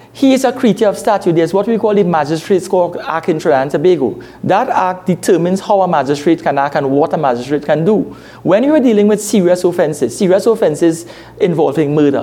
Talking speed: 205 wpm